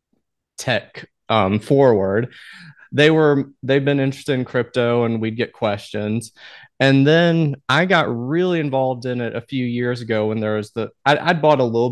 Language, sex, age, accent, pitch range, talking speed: English, male, 30-49, American, 115-135 Hz, 175 wpm